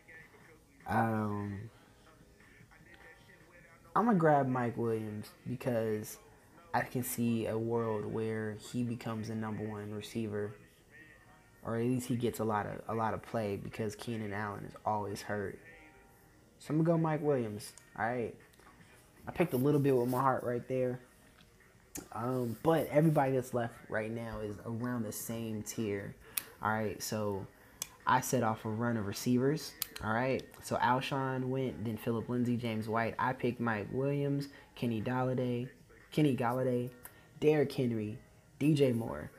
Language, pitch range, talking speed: English, 110-130 Hz, 150 wpm